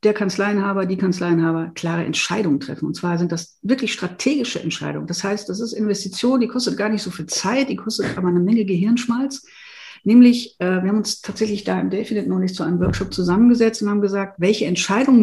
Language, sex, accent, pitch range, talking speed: German, female, German, 180-245 Hz, 205 wpm